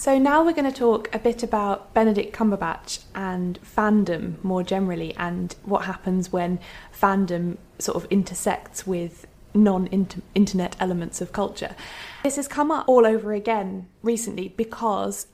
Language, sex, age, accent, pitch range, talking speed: English, female, 20-39, British, 185-220 Hz, 145 wpm